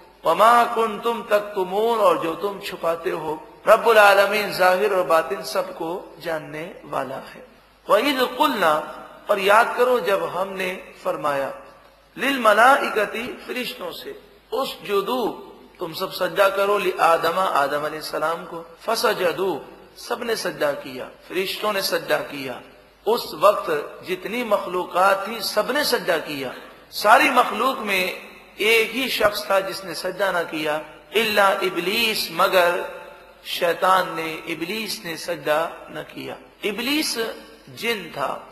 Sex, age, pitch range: male, 50-69, 165-220 Hz